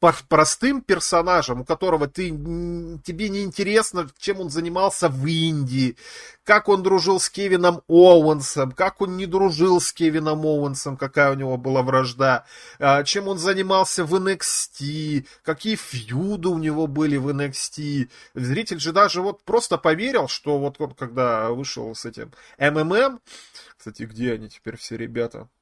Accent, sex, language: native, male, Russian